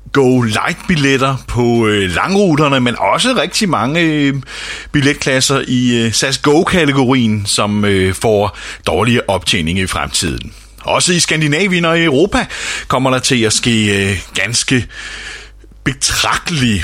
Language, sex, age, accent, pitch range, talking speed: Danish, male, 30-49, native, 100-140 Hz, 120 wpm